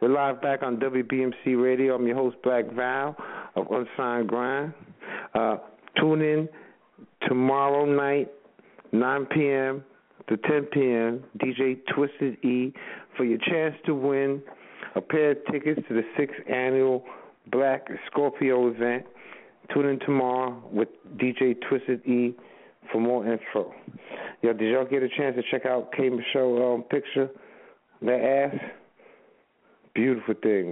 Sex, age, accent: male, 50-69, American